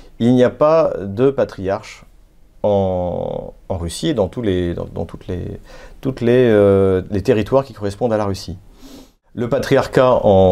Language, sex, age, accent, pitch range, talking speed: French, male, 40-59, French, 95-115 Hz, 130 wpm